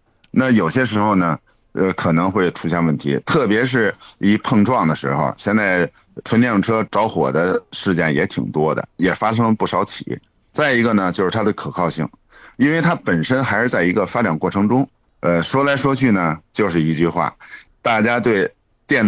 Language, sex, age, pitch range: Chinese, male, 50-69, 85-115 Hz